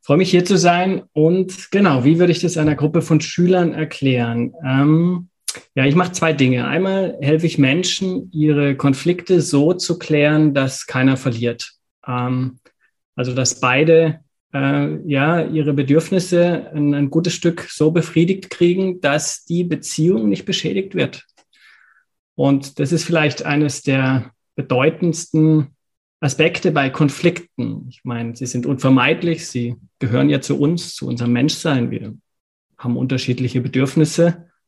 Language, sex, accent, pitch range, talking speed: German, male, German, 135-170 Hz, 140 wpm